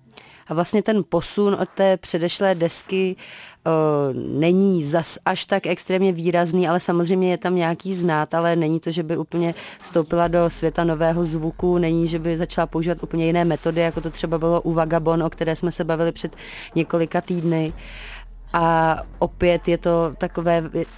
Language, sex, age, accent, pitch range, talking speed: Czech, female, 30-49, native, 160-175 Hz, 165 wpm